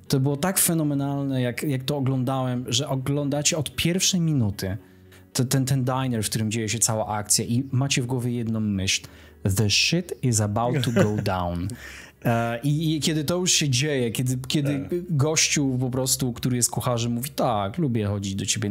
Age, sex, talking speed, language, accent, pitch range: 20-39, male, 175 wpm, Polish, native, 110-135 Hz